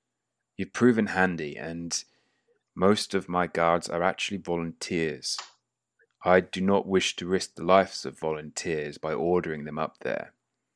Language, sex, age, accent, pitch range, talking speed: English, male, 30-49, British, 85-100 Hz, 145 wpm